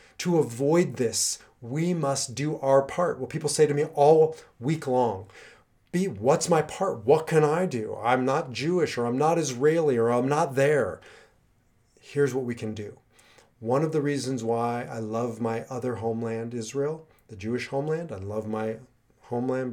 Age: 30-49